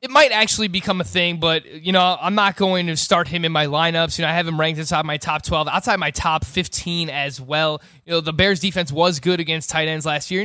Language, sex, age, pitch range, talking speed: English, male, 20-39, 160-185 Hz, 270 wpm